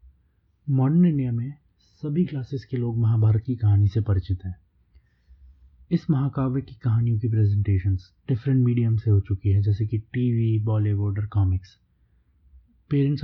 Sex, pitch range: male, 100-130 Hz